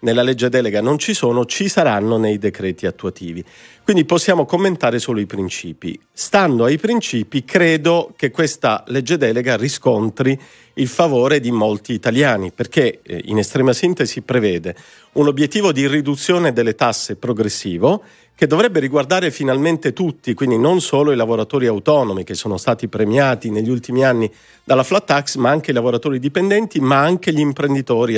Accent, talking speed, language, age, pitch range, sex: native, 155 wpm, Italian, 50-69, 115-160 Hz, male